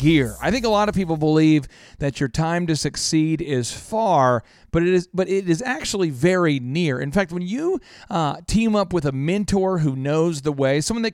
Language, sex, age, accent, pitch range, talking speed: English, male, 40-59, American, 145-195 Hz, 215 wpm